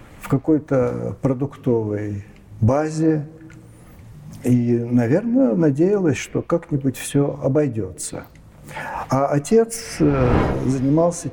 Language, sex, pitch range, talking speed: Russian, male, 120-150 Hz, 70 wpm